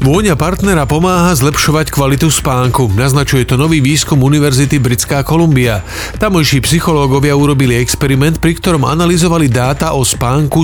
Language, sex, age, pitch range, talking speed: Slovak, male, 40-59, 120-155 Hz, 130 wpm